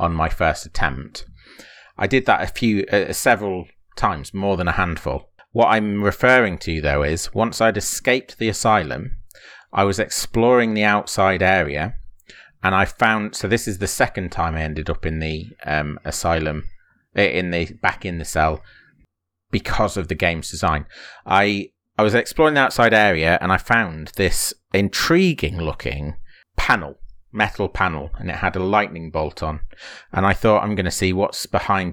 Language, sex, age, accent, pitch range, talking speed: English, male, 30-49, British, 85-105 Hz, 170 wpm